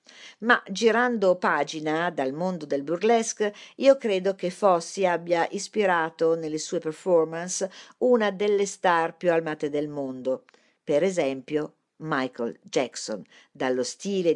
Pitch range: 155-215 Hz